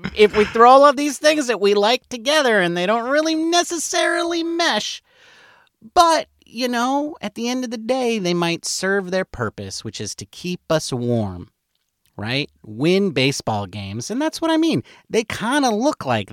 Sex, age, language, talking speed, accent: male, 40-59, English, 185 wpm, American